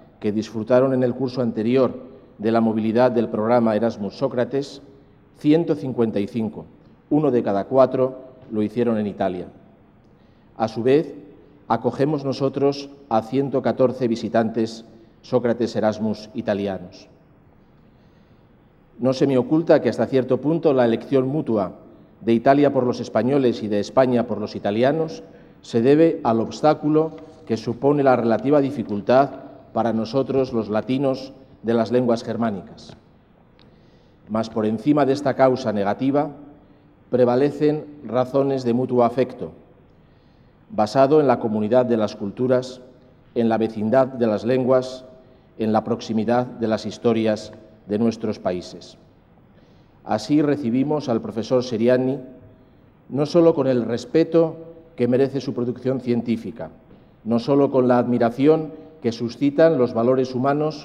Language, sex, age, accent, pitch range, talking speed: Spanish, male, 50-69, Spanish, 115-135 Hz, 125 wpm